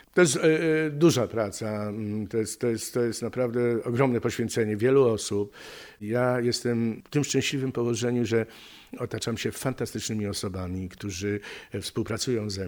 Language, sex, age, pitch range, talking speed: Polish, male, 50-69, 100-115 Hz, 125 wpm